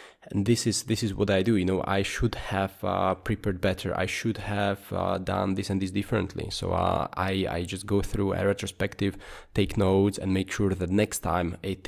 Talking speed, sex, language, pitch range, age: 215 wpm, male, English, 95-110 Hz, 20-39